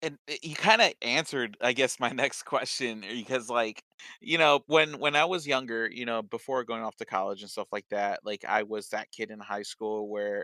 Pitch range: 105-125 Hz